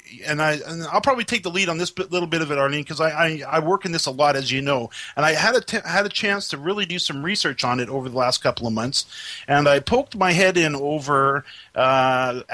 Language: English